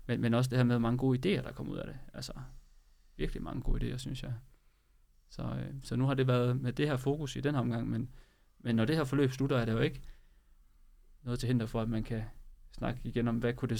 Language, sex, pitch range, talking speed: Danish, male, 120-135 Hz, 260 wpm